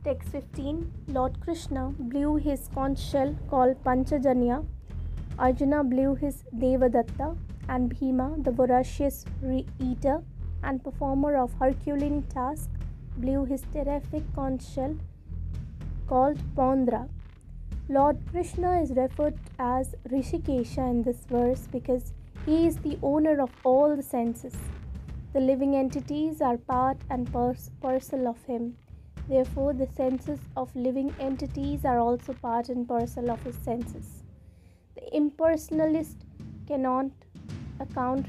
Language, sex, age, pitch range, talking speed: English, female, 20-39, 250-280 Hz, 120 wpm